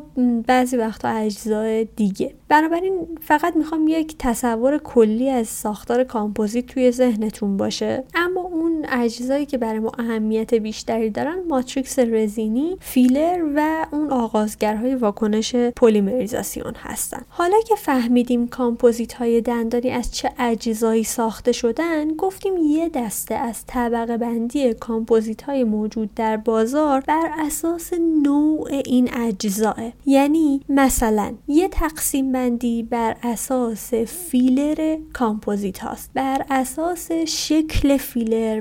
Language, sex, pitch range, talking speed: Persian, female, 225-275 Hz, 115 wpm